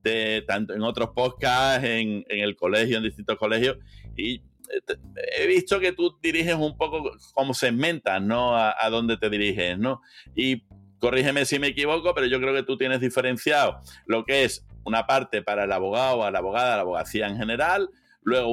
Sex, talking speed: male, 190 wpm